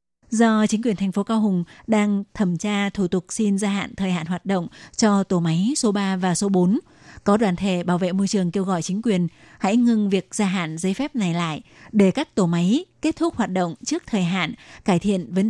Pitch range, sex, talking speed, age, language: 185-220 Hz, female, 235 wpm, 20-39, Vietnamese